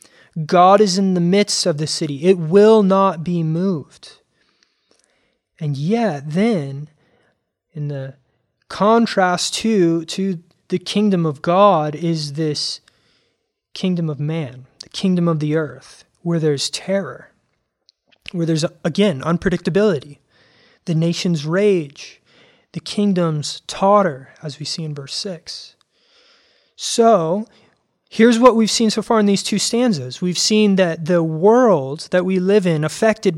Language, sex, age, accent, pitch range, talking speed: English, male, 20-39, American, 155-205 Hz, 135 wpm